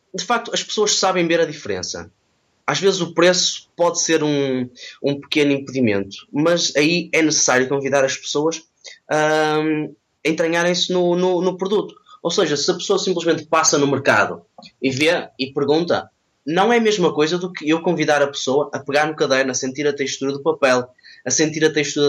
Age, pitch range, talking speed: 20-39, 135-165 Hz, 185 wpm